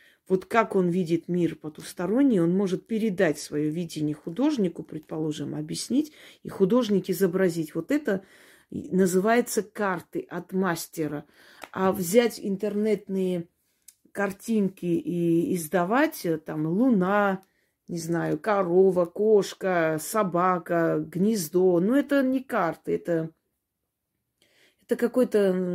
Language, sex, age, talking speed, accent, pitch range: Russian, female, 30-49, 105 wpm, native, 165-205 Hz